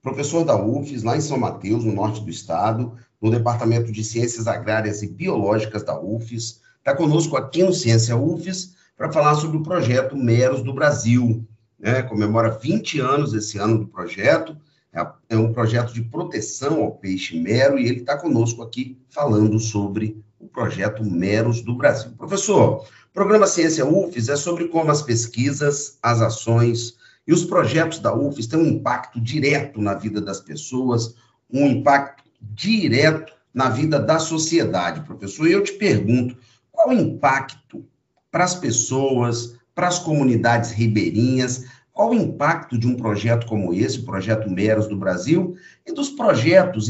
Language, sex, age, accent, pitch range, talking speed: Portuguese, male, 50-69, Brazilian, 115-160 Hz, 160 wpm